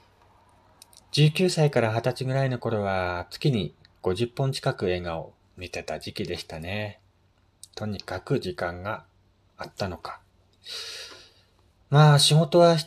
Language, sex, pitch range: Japanese, male, 95-135 Hz